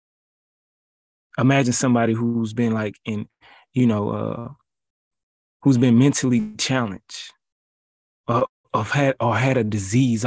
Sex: male